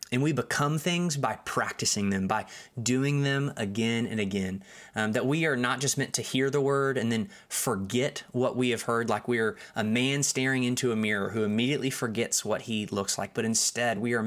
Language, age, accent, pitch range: English, 20-39, American, 115-140 Hz